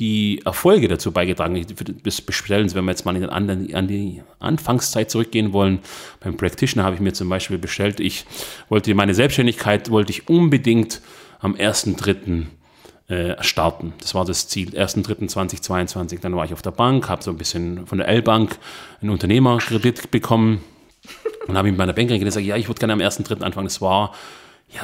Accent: German